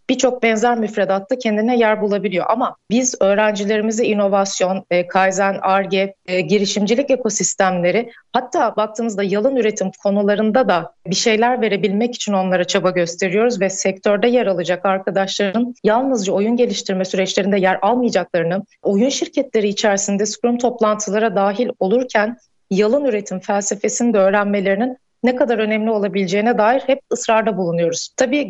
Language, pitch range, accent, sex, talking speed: Turkish, 195-240 Hz, native, female, 125 wpm